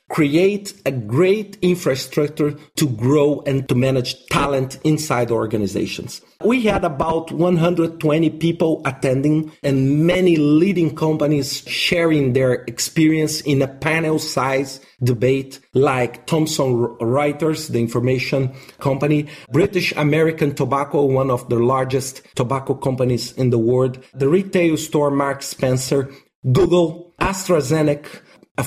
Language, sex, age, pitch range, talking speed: English, male, 40-59, 135-165 Hz, 115 wpm